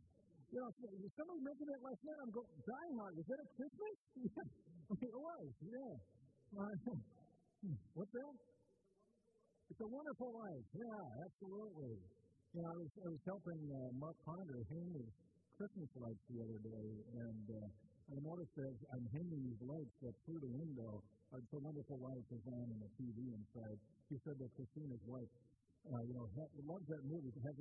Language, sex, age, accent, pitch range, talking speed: English, male, 50-69, American, 120-170 Hz, 180 wpm